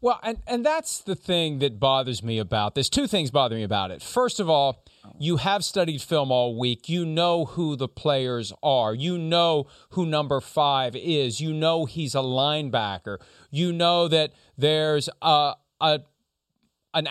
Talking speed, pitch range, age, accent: 175 wpm, 130-180 Hz, 40-59, American